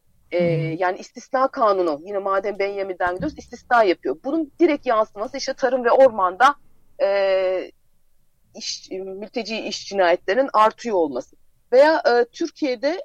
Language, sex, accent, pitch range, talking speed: Turkish, female, native, 200-275 Hz, 125 wpm